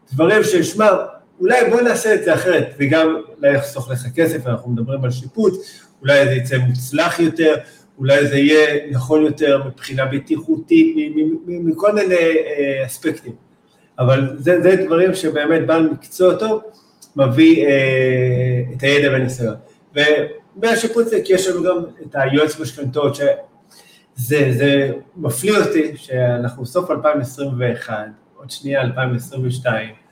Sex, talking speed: male, 130 wpm